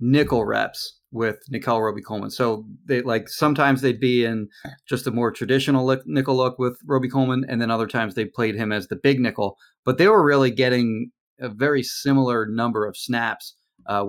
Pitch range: 110-130 Hz